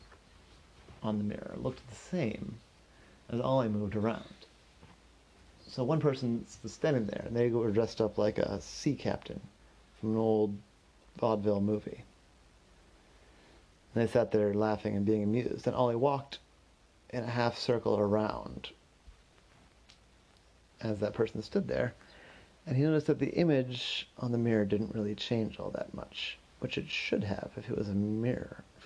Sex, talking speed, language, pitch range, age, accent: male, 155 wpm, English, 90-125 Hz, 40-59, American